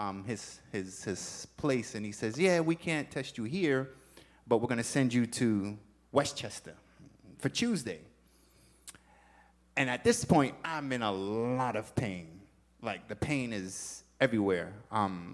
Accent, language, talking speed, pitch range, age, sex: American, English, 155 wpm, 95-140 Hz, 30-49, male